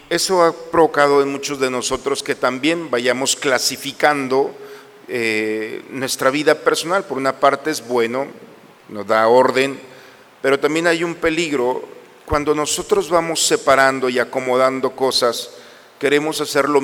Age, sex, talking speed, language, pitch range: 50-69, male, 135 wpm, Spanish, 130-150 Hz